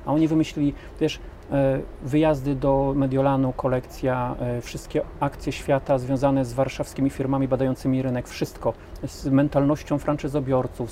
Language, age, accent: Polish, 40-59, native